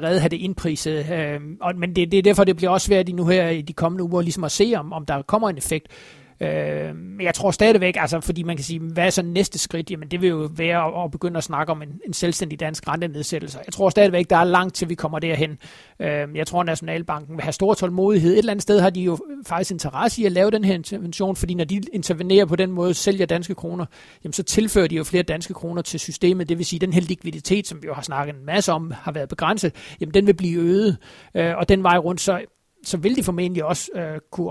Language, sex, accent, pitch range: Danish, male, native, 160-185 Hz